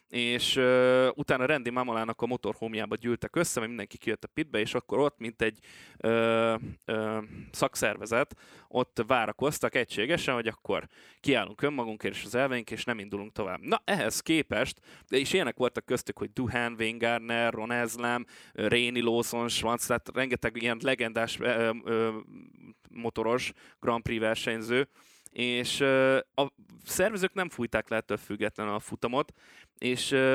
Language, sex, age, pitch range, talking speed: Hungarian, male, 20-39, 110-130 Hz, 140 wpm